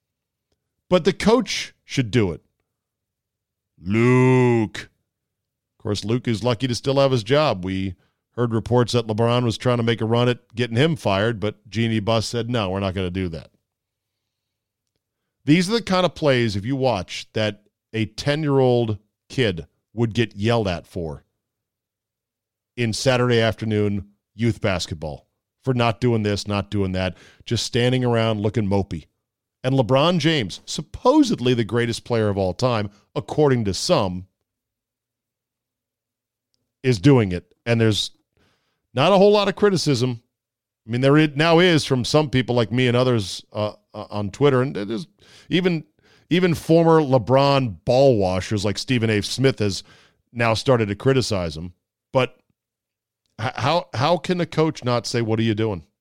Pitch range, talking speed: 105-130 Hz, 160 wpm